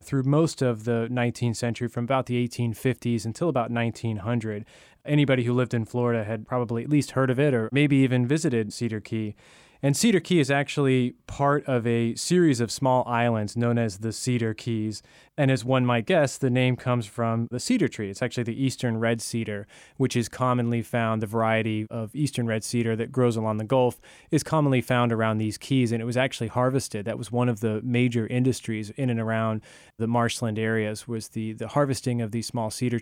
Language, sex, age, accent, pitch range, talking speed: English, male, 20-39, American, 115-130 Hz, 205 wpm